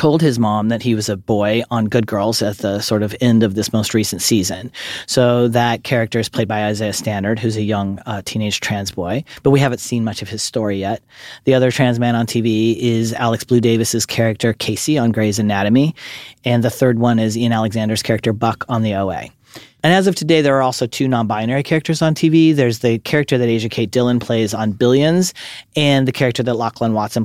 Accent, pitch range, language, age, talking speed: American, 110-135 Hz, English, 40-59, 220 wpm